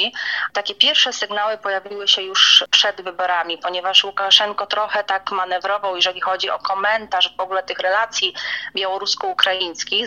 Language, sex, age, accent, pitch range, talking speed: Polish, female, 30-49, native, 175-205 Hz, 130 wpm